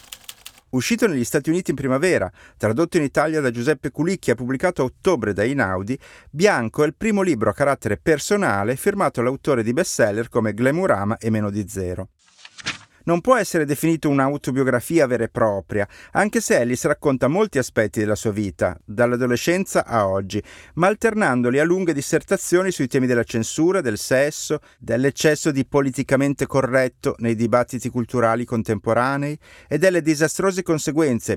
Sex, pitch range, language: male, 120-165 Hz, Italian